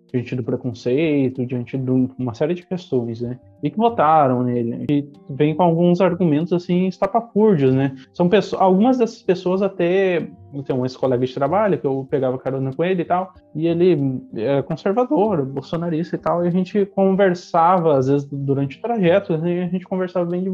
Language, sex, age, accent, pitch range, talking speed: Portuguese, male, 20-39, Brazilian, 130-185 Hz, 195 wpm